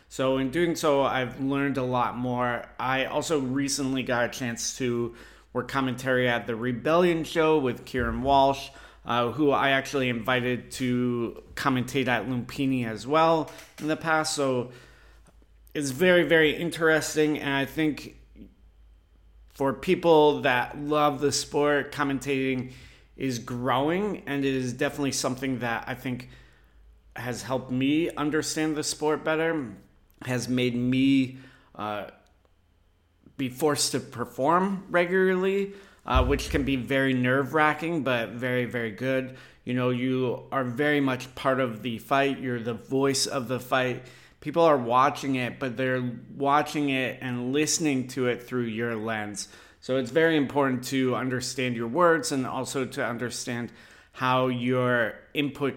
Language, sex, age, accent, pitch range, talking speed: English, male, 30-49, American, 125-145 Hz, 145 wpm